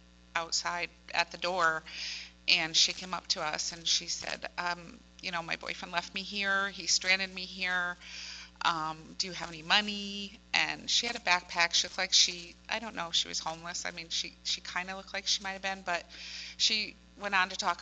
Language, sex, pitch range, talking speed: English, female, 160-190 Hz, 210 wpm